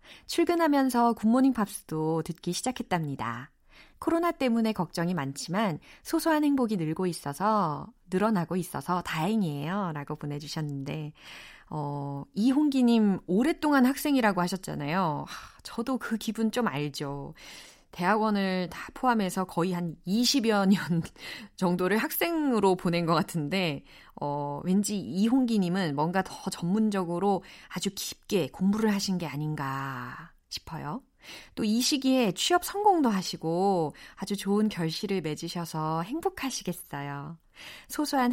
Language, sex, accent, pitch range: Korean, female, native, 165-255 Hz